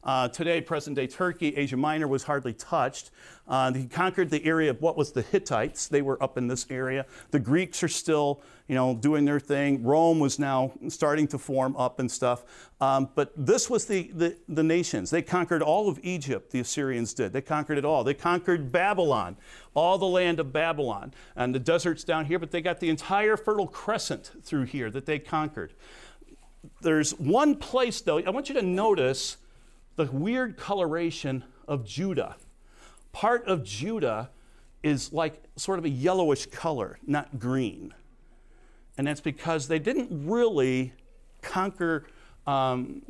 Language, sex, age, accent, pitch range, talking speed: English, male, 50-69, American, 135-180 Hz, 170 wpm